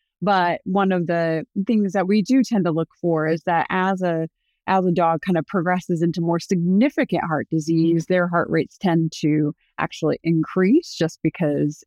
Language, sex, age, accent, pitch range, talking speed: English, female, 30-49, American, 165-200 Hz, 180 wpm